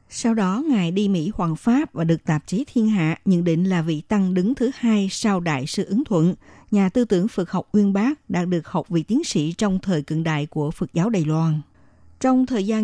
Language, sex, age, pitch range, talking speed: Vietnamese, female, 60-79, 170-230 Hz, 240 wpm